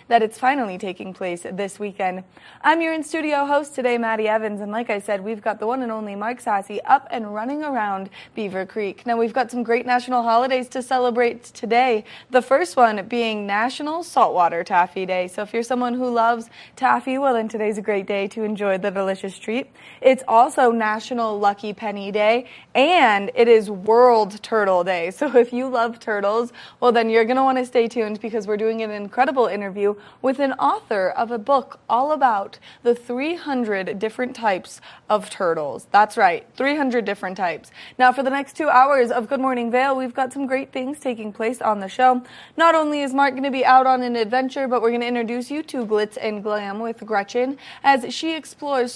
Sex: female